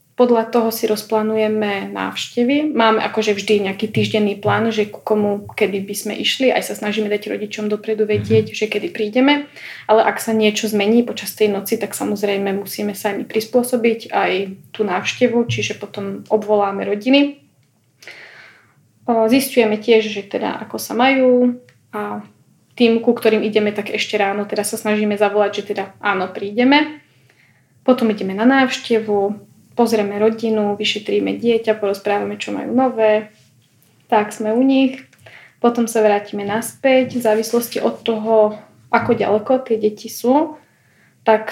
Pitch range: 205-235 Hz